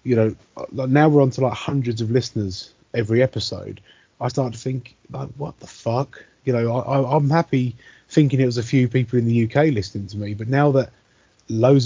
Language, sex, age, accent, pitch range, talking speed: English, male, 30-49, British, 115-145 Hz, 220 wpm